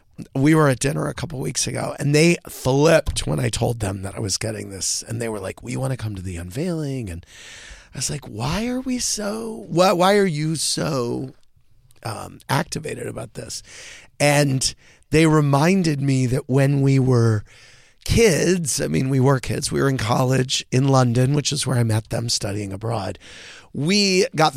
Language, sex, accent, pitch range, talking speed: English, male, American, 115-165 Hz, 190 wpm